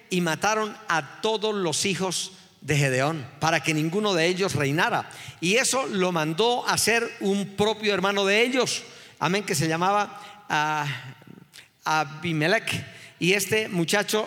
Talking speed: 140 wpm